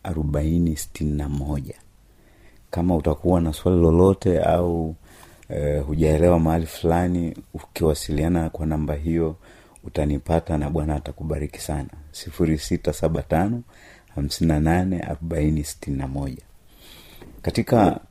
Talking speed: 75 wpm